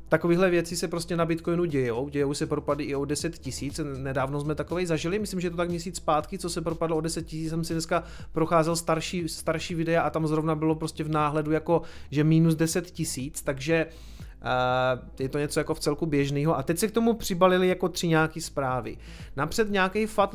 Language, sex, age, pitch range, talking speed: Czech, male, 30-49, 150-175 Hz, 210 wpm